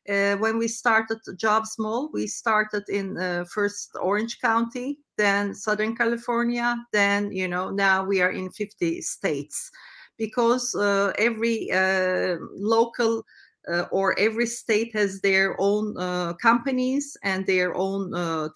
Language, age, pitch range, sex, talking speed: English, 40-59, 165-210 Hz, female, 140 wpm